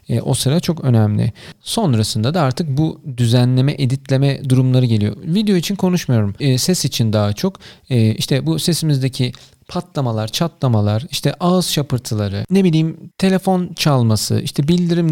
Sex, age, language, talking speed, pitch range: male, 40-59, Turkish, 130 wpm, 120-160 Hz